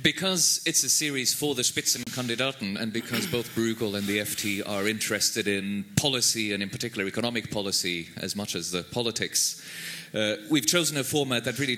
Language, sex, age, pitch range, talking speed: English, male, 30-49, 105-145 Hz, 180 wpm